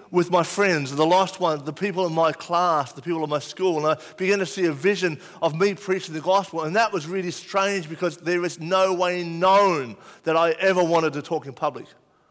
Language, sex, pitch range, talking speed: English, male, 130-180 Hz, 230 wpm